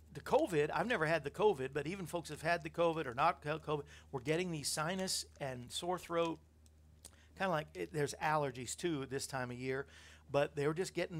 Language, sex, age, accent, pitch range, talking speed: English, male, 50-69, American, 120-170 Hz, 215 wpm